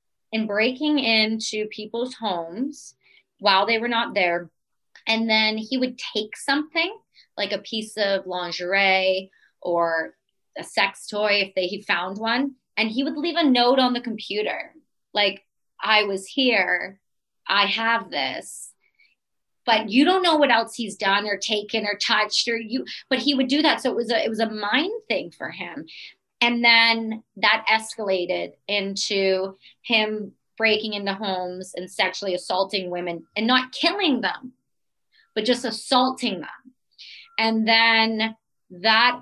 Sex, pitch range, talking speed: female, 190-235 Hz, 155 wpm